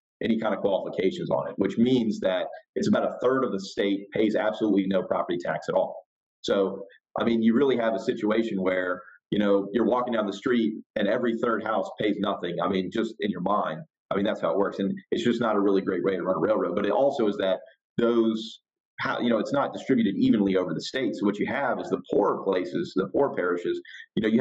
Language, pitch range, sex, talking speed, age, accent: English, 100-120 Hz, male, 240 wpm, 40-59, American